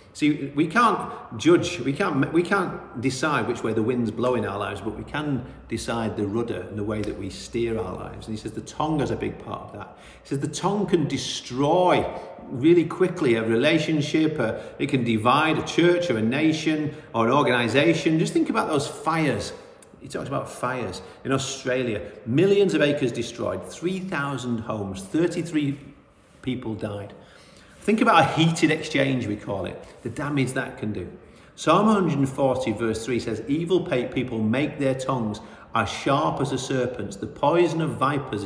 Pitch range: 110-155 Hz